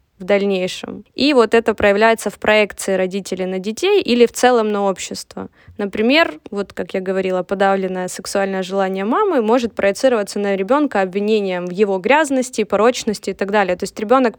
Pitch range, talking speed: 195-240 Hz, 165 wpm